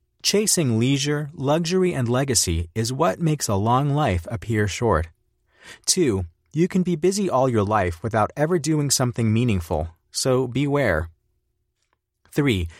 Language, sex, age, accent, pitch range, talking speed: English, male, 30-49, American, 100-155 Hz, 135 wpm